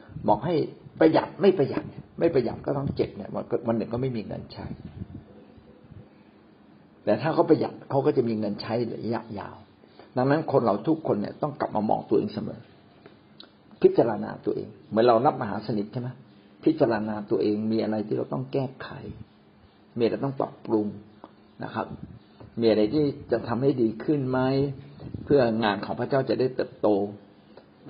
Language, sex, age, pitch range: Thai, male, 60-79, 105-130 Hz